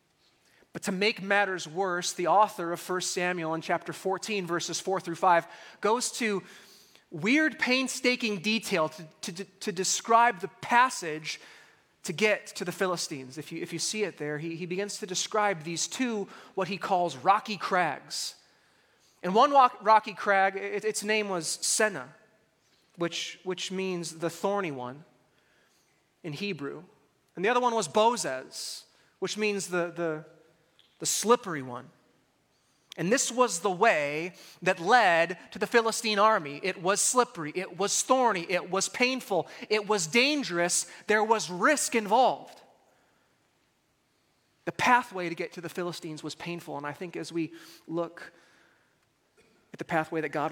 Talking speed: 155 wpm